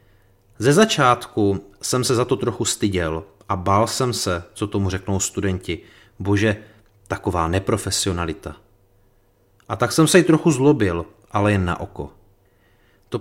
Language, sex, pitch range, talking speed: Czech, male, 95-120 Hz, 140 wpm